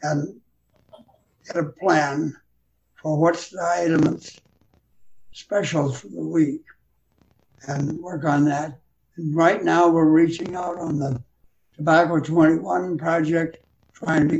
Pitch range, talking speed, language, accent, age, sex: 150-180 Hz, 120 wpm, English, American, 60-79, male